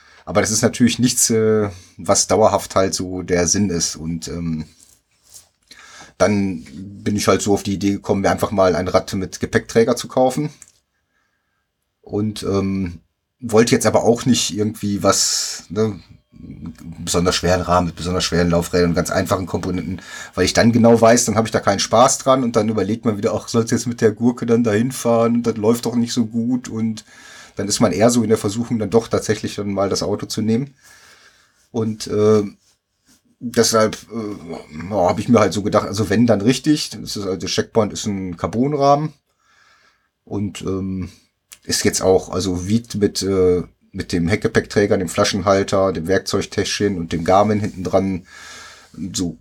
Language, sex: German, male